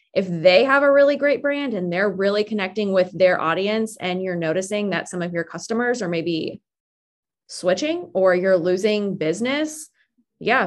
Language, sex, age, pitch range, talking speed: English, female, 20-39, 180-210 Hz, 170 wpm